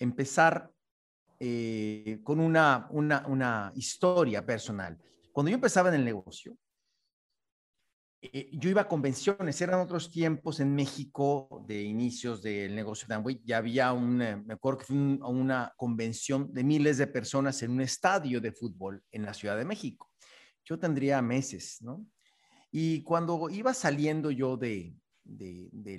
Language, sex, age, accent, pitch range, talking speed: Spanish, male, 40-59, Mexican, 120-165 Hz, 150 wpm